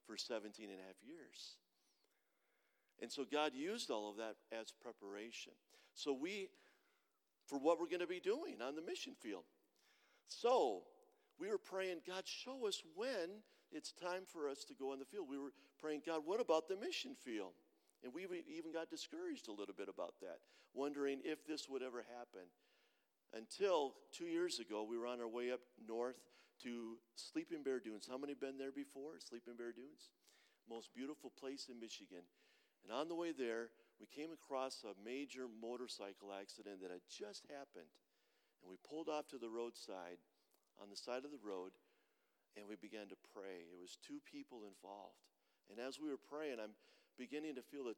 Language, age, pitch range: English, 50-69, 110-170 Hz